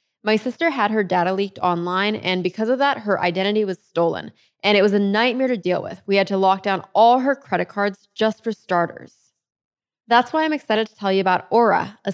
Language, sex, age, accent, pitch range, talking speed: English, female, 20-39, American, 190-250 Hz, 220 wpm